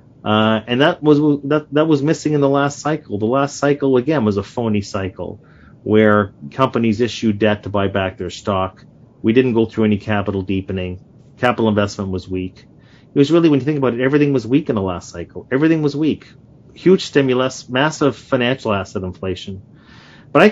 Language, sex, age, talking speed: English, male, 40-59, 195 wpm